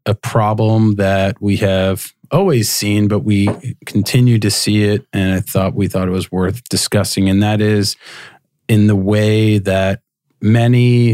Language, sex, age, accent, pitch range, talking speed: English, male, 40-59, American, 95-105 Hz, 160 wpm